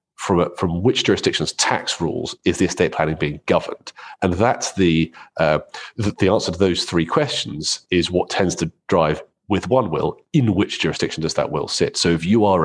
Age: 40-59